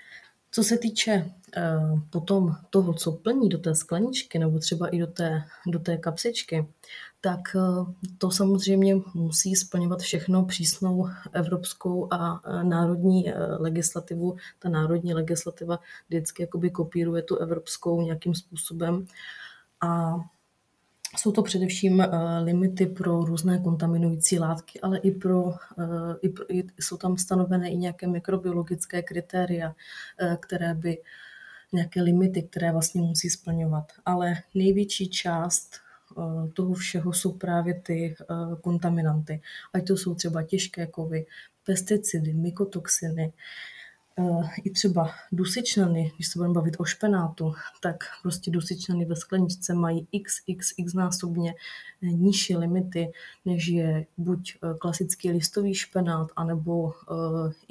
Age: 20-39